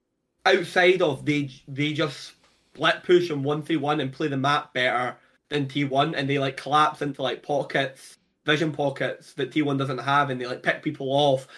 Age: 20-39